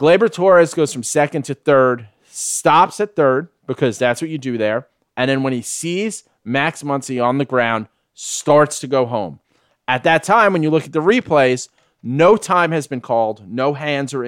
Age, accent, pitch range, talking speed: 30-49, American, 125-160 Hz, 200 wpm